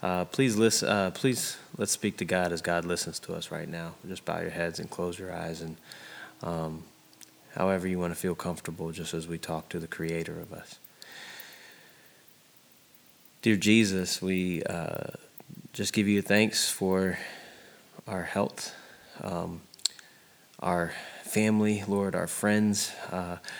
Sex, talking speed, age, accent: male, 150 wpm, 20-39, American